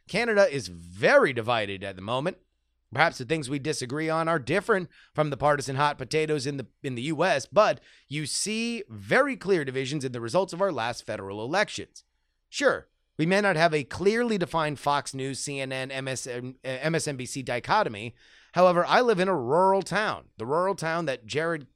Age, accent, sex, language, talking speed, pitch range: 30-49, American, male, English, 180 wpm, 115-185 Hz